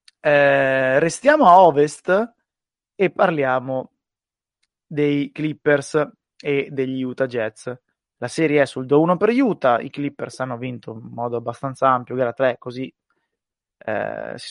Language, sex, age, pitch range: Italian, male, 20-39, 125-145 Hz